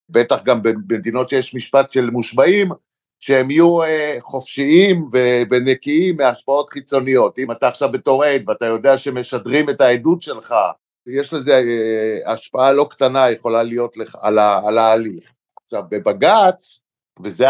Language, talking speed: Hebrew, 120 wpm